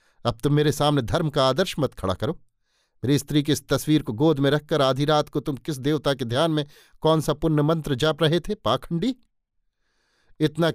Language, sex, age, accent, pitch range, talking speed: Hindi, male, 50-69, native, 120-145 Hz, 205 wpm